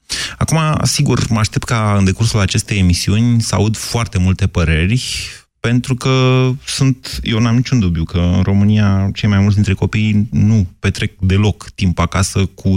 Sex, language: male, Romanian